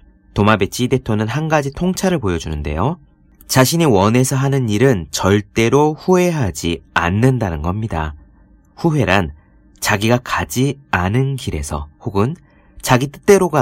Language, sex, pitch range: Korean, male, 90-145 Hz